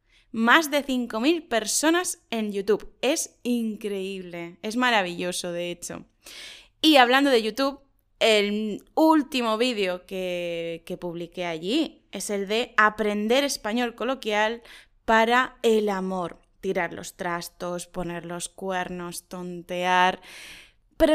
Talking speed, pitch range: 115 wpm, 190-240 Hz